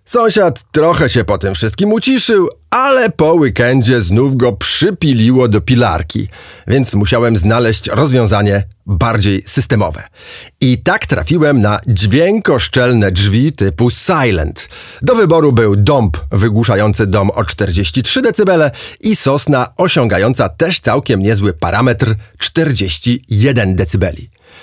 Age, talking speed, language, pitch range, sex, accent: 30-49, 115 wpm, Polish, 100-145 Hz, male, native